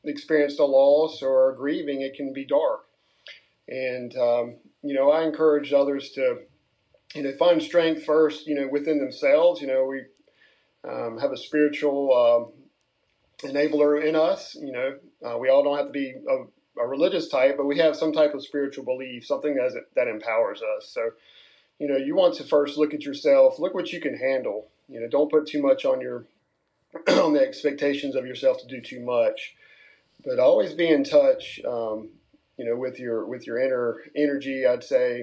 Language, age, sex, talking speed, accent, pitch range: English, 40-59, male, 190 wpm, American, 130-185 Hz